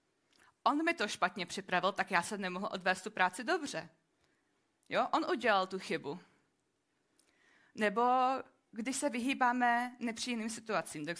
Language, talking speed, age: Czech, 135 wpm, 20-39